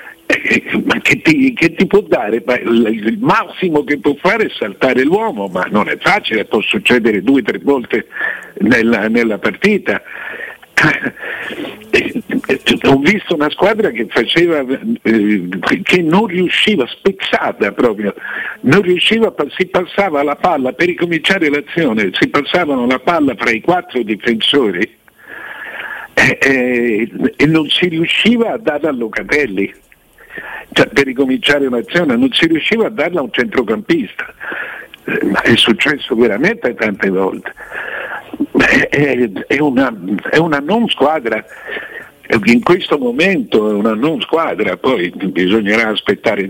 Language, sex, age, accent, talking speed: Italian, male, 60-79, native, 130 wpm